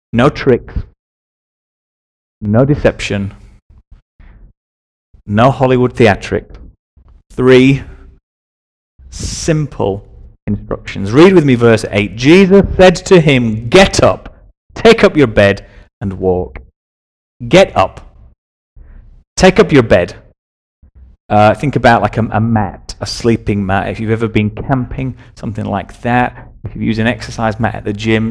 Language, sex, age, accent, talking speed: English, male, 30-49, British, 125 wpm